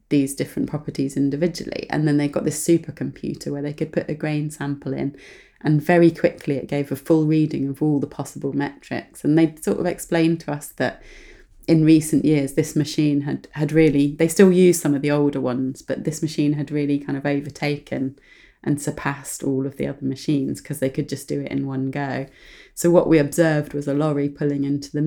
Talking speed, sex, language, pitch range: 215 wpm, female, English, 145-165 Hz